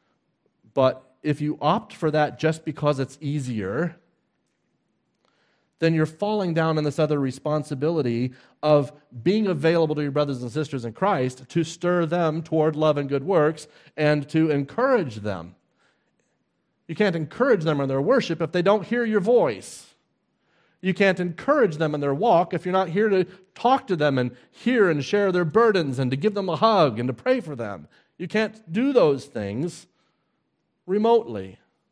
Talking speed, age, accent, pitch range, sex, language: 170 wpm, 40-59, American, 120-170 Hz, male, English